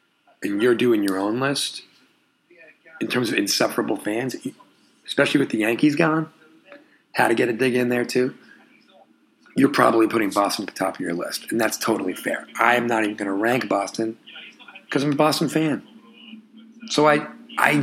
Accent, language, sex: American, English, male